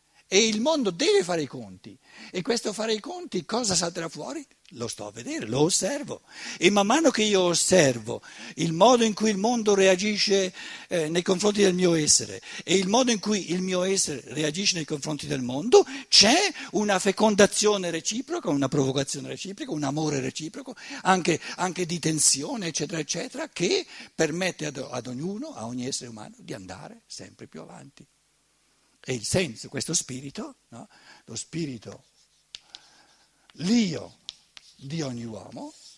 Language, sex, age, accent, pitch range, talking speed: Italian, male, 60-79, native, 140-215 Hz, 160 wpm